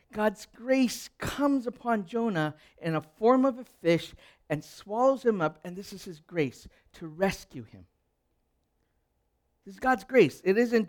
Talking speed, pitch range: 160 wpm, 165-225 Hz